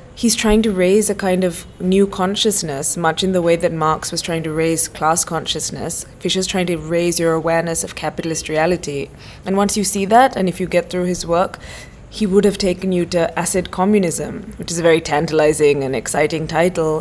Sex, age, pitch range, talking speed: female, 20-39, 160-185 Hz, 205 wpm